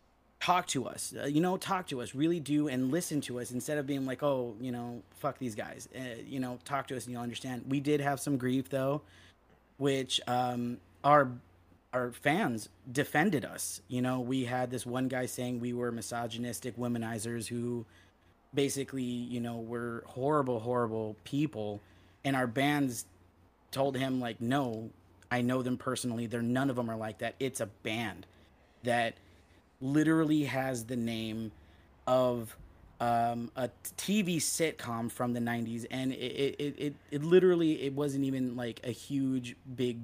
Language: English